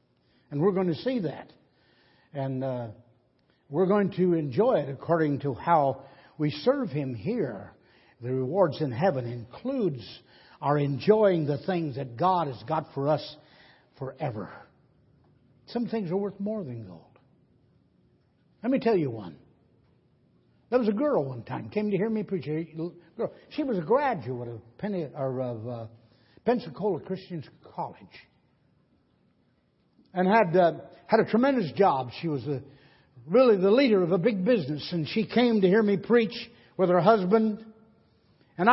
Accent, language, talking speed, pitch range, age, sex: American, English, 145 wpm, 140-220 Hz, 60-79, male